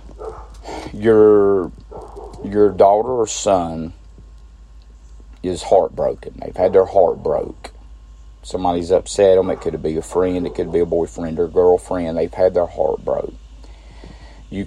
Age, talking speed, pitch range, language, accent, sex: 40-59, 135 wpm, 65-95 Hz, English, American, male